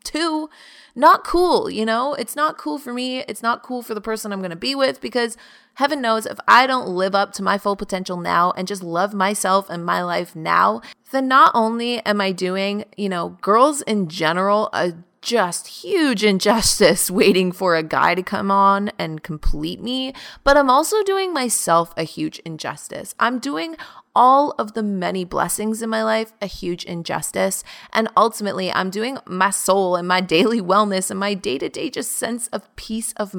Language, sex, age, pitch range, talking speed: English, female, 30-49, 185-240 Hz, 190 wpm